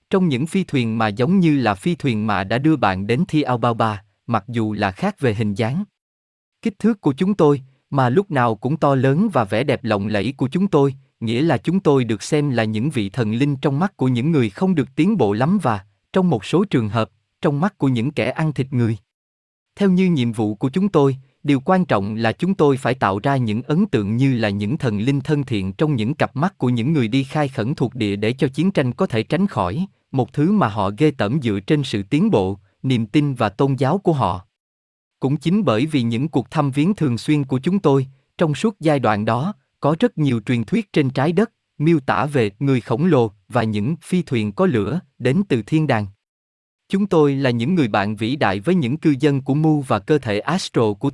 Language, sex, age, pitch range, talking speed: Vietnamese, male, 20-39, 110-155 Hz, 240 wpm